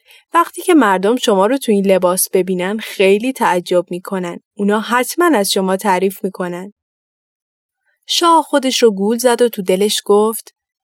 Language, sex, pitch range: Persian, female, 195-285 Hz